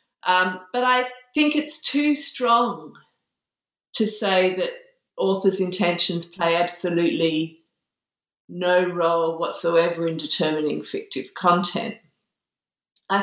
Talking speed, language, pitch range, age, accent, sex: 100 wpm, English, 170-235 Hz, 50-69, Australian, female